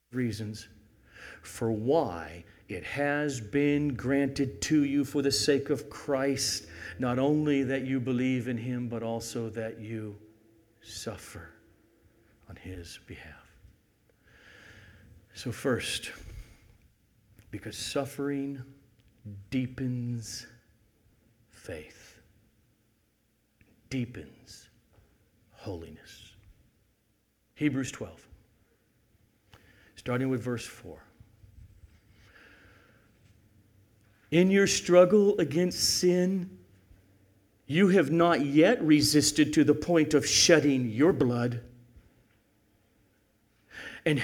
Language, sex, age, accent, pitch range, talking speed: English, male, 60-79, American, 110-155 Hz, 85 wpm